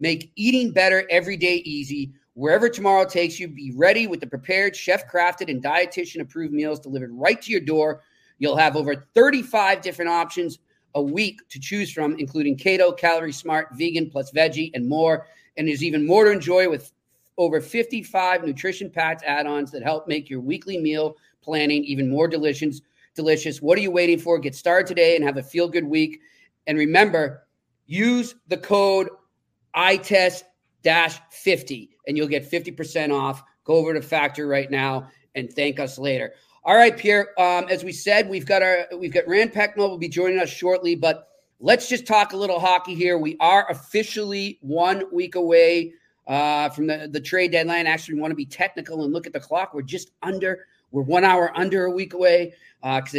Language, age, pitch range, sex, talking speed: English, 40-59, 150-185 Hz, male, 185 wpm